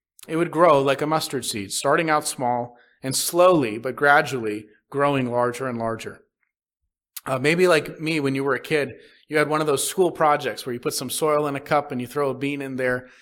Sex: male